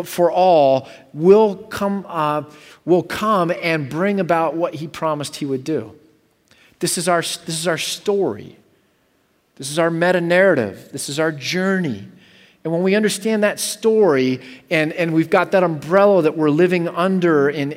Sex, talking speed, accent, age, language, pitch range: male, 165 wpm, American, 40-59, English, 140-190 Hz